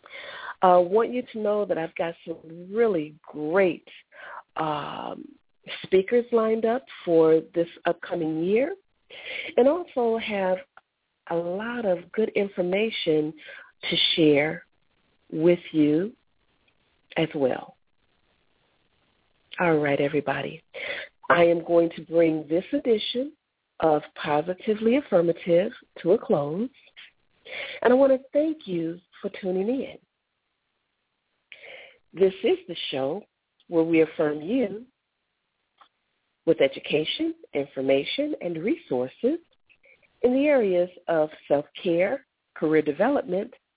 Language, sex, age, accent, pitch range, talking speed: English, female, 40-59, American, 160-245 Hz, 105 wpm